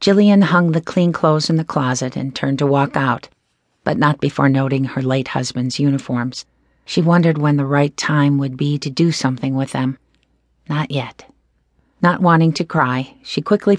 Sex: female